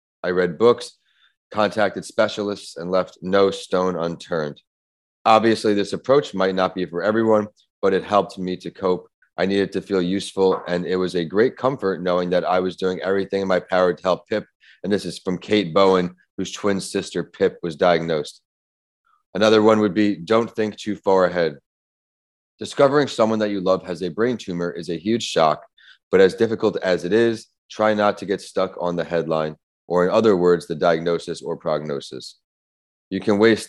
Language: English